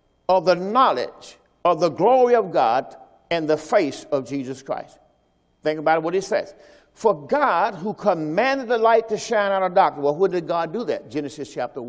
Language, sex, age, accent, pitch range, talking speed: English, male, 50-69, American, 155-245 Hz, 190 wpm